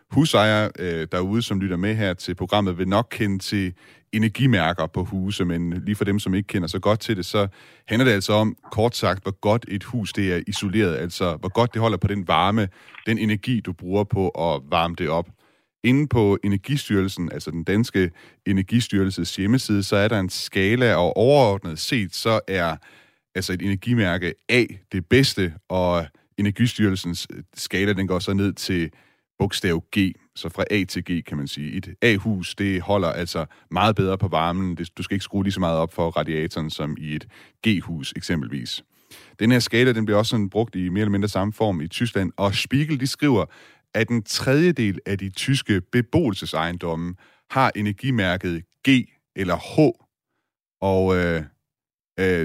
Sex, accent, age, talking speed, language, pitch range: male, native, 30-49, 180 wpm, Danish, 90-110 Hz